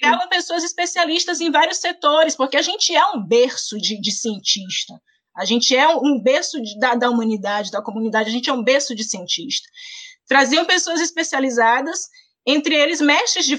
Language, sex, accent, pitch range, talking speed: Portuguese, female, Brazilian, 260-360 Hz, 175 wpm